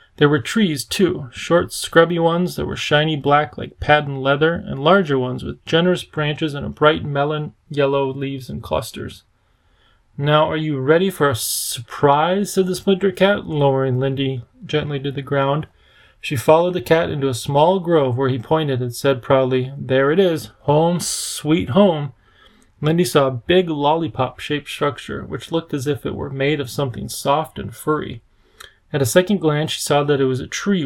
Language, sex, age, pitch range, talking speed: English, male, 30-49, 135-165 Hz, 180 wpm